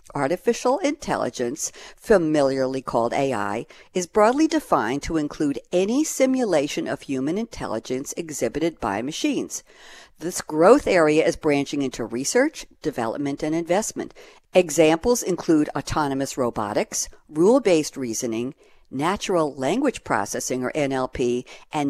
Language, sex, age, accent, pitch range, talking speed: English, female, 60-79, American, 140-210 Hz, 110 wpm